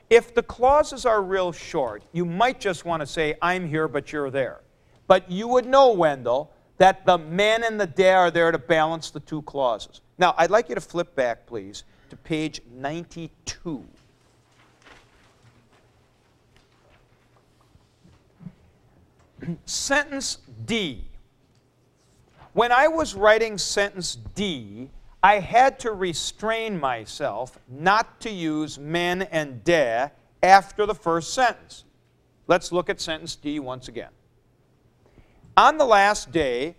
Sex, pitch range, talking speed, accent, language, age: male, 140-205 Hz, 130 wpm, American, English, 50-69